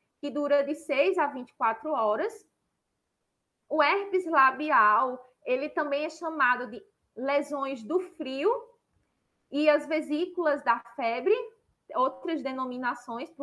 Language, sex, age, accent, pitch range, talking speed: Portuguese, female, 20-39, Brazilian, 260-325 Hz, 110 wpm